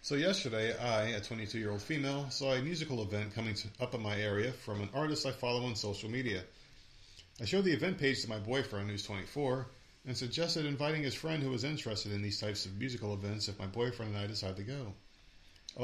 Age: 40-59